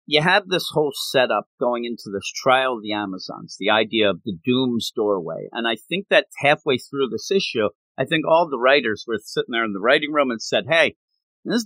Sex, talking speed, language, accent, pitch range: male, 215 wpm, English, American, 120-195 Hz